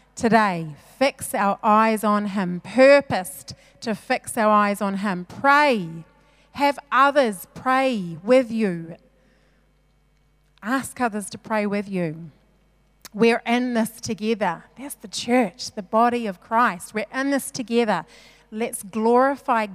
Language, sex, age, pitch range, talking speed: English, female, 30-49, 205-270 Hz, 130 wpm